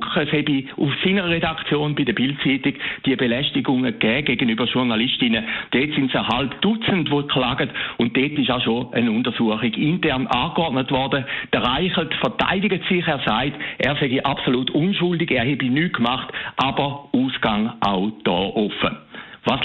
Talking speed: 155 wpm